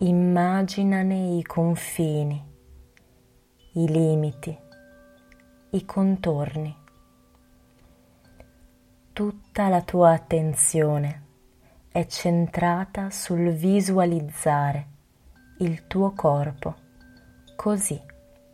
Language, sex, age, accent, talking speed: Italian, female, 20-39, native, 60 wpm